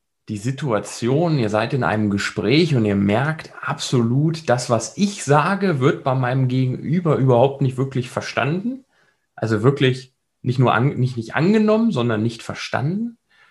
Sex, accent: male, German